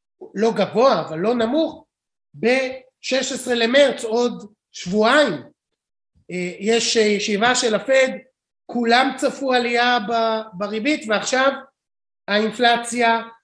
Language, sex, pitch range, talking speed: Hebrew, male, 215-255 Hz, 85 wpm